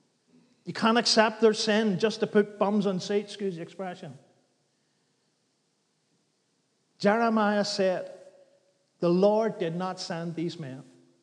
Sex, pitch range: male, 170-210 Hz